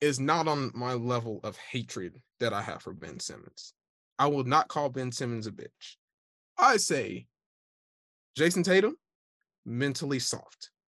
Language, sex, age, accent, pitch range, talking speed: English, male, 20-39, American, 120-165 Hz, 150 wpm